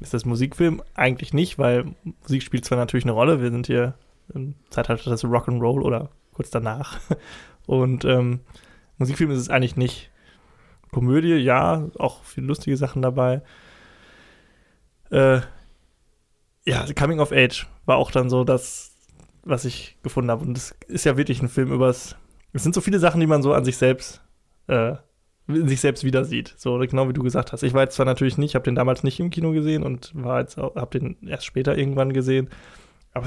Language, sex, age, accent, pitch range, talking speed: German, male, 20-39, German, 125-145 Hz, 185 wpm